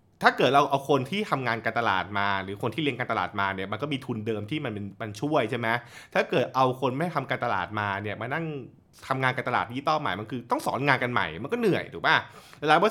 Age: 20-39